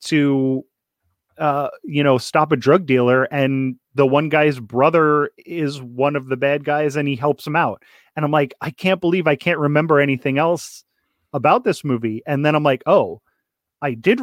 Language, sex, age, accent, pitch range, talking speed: English, male, 30-49, American, 130-160 Hz, 190 wpm